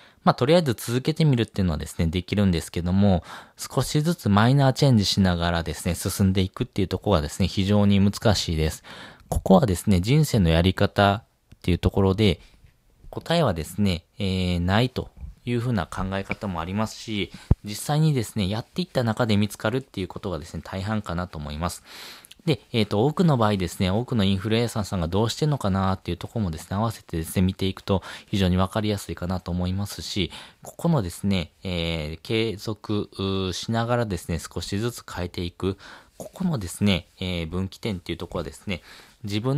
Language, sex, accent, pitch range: Japanese, male, native, 90-115 Hz